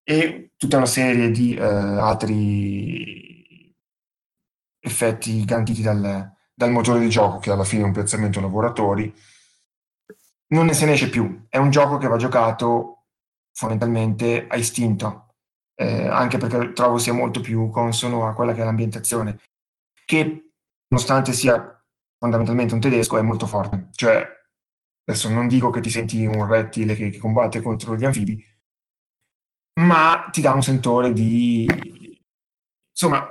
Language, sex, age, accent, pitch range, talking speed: Italian, male, 20-39, native, 105-125 Hz, 140 wpm